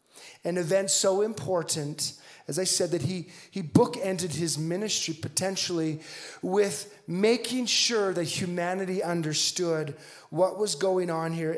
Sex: male